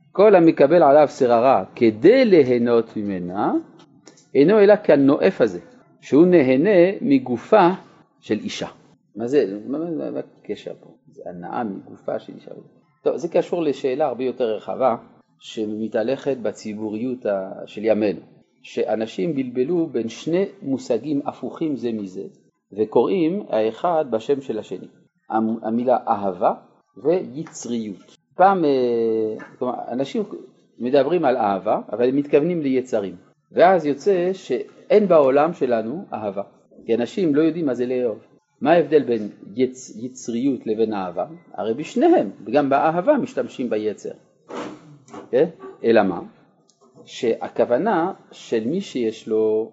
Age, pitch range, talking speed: 40-59, 115-175 Hz, 115 wpm